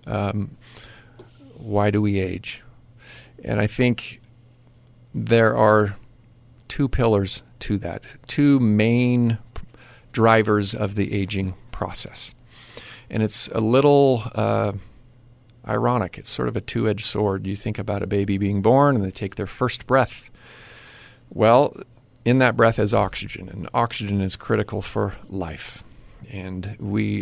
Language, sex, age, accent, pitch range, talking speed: English, male, 40-59, American, 100-120 Hz, 130 wpm